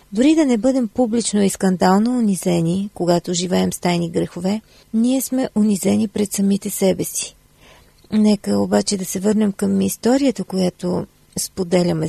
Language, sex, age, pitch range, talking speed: Bulgarian, female, 40-59, 185-220 Hz, 145 wpm